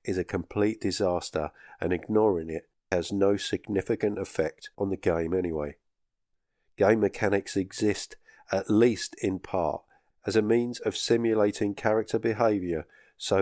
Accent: British